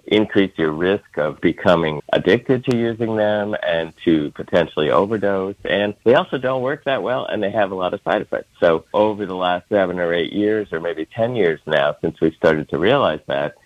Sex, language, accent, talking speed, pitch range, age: male, English, American, 210 wpm, 85-105 Hz, 50-69